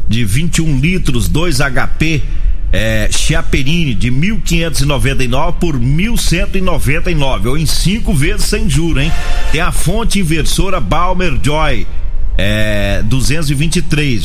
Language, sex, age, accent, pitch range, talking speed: Portuguese, male, 40-59, Brazilian, 120-175 Hz, 110 wpm